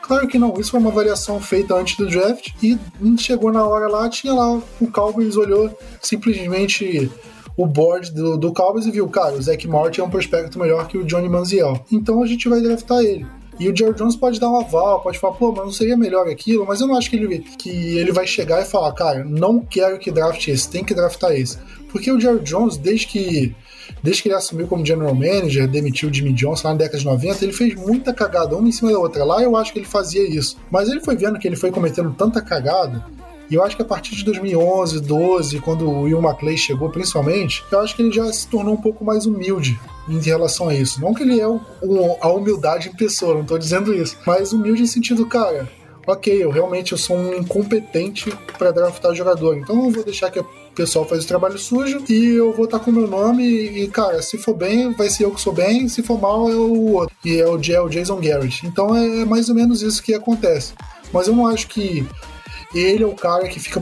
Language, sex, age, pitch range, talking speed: Portuguese, male, 20-39, 165-225 Hz, 240 wpm